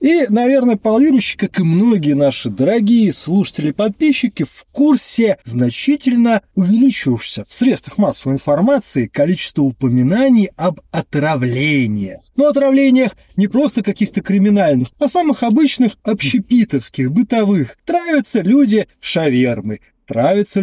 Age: 30-49